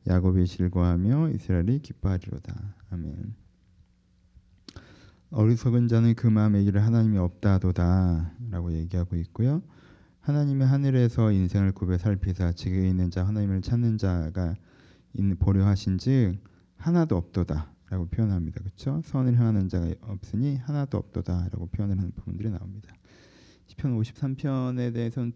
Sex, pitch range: male, 90-115 Hz